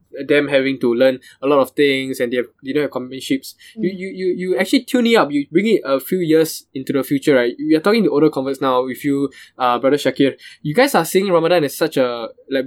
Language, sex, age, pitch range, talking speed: English, male, 10-29, 135-170 Hz, 260 wpm